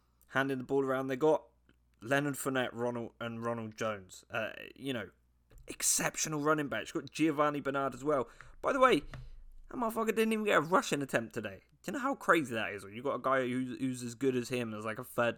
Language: English